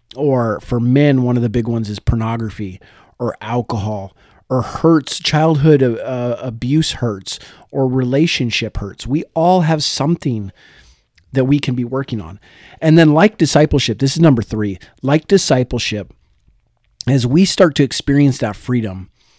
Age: 40-59